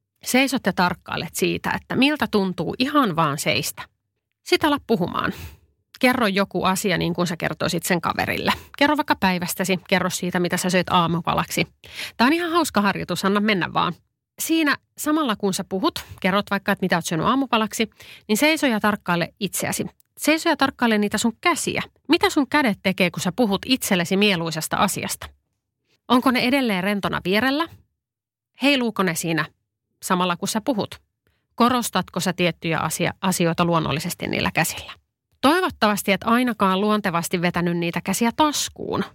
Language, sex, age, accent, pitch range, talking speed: Finnish, female, 30-49, native, 175-235 Hz, 150 wpm